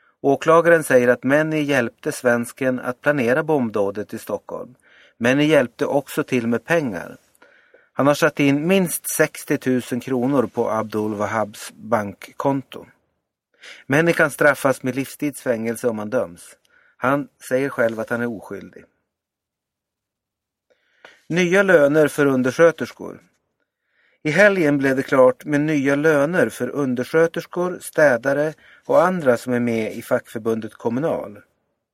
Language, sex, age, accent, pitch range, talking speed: Swedish, male, 30-49, native, 120-155 Hz, 125 wpm